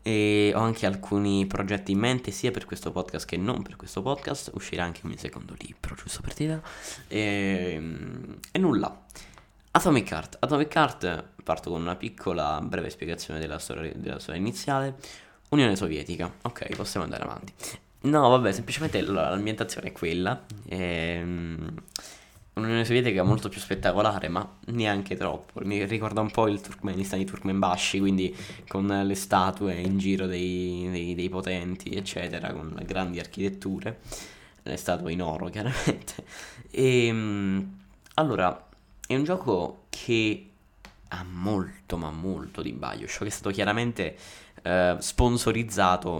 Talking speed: 145 wpm